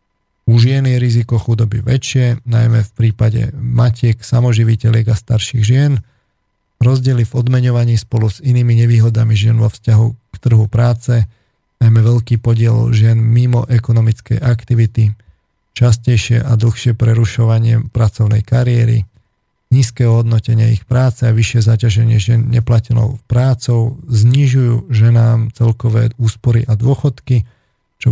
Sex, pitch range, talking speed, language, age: male, 110-120 Hz, 120 wpm, Slovak, 40-59